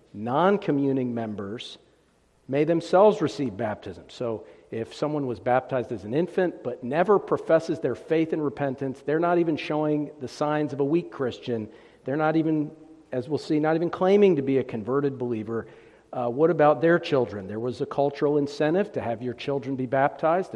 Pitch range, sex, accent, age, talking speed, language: 125-150 Hz, male, American, 50-69, 180 wpm, English